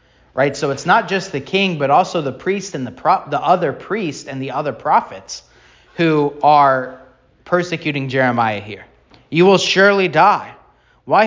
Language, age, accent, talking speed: English, 30-49, American, 160 wpm